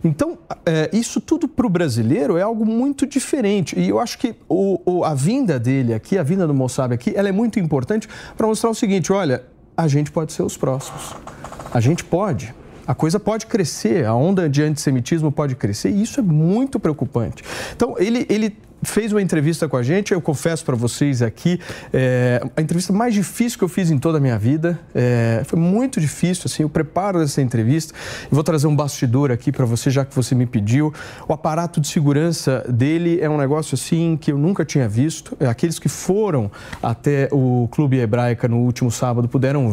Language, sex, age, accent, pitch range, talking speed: Portuguese, male, 40-59, Brazilian, 130-175 Hz, 200 wpm